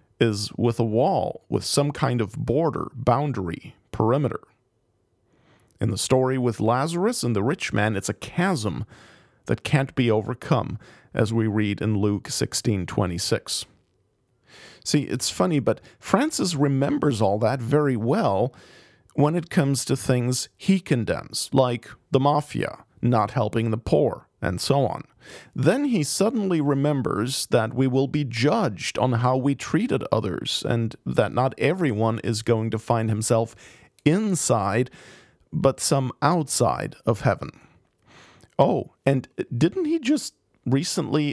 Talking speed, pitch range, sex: 140 wpm, 115-145 Hz, male